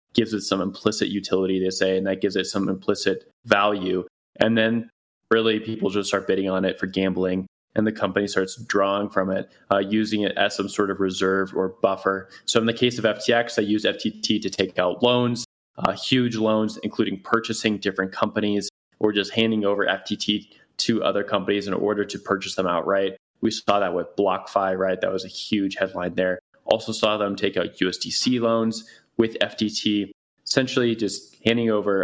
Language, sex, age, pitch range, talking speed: English, male, 20-39, 95-110 Hz, 190 wpm